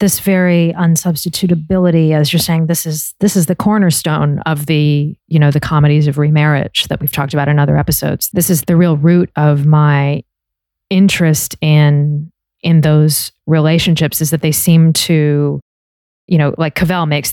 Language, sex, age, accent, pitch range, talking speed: English, female, 30-49, American, 145-165 Hz, 170 wpm